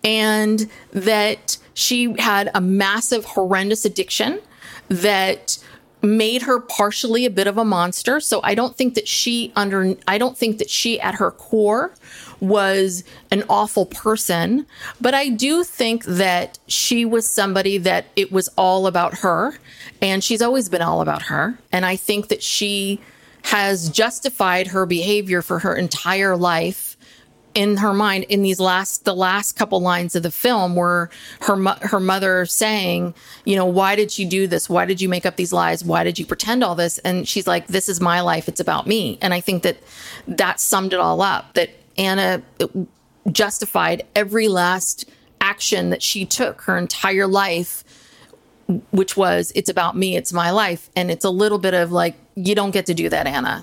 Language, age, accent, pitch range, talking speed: English, 30-49, American, 185-220 Hz, 180 wpm